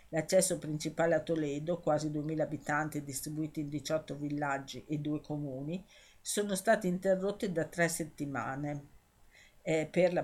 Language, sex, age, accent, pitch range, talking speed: Italian, female, 50-69, native, 150-180 Hz, 135 wpm